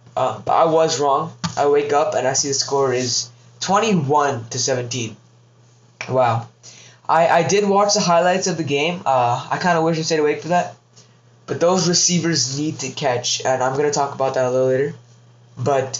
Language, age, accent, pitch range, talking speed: English, 20-39, American, 125-165 Hz, 205 wpm